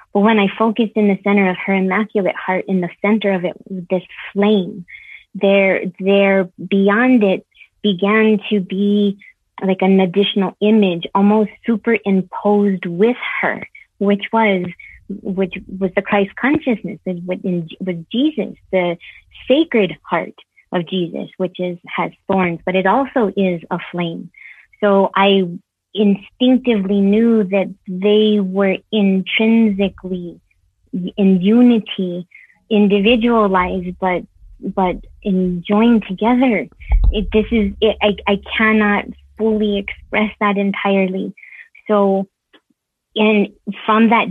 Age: 30-49